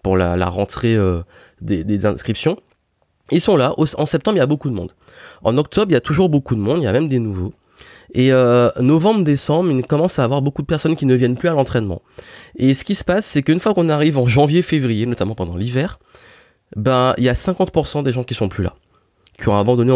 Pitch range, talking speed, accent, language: 110-155 Hz, 235 wpm, French, French